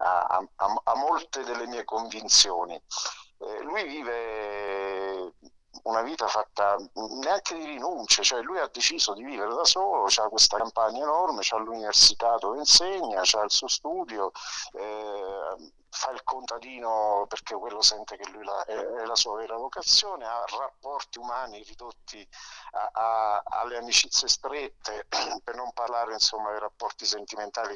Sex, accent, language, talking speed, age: male, native, Italian, 145 wpm, 50-69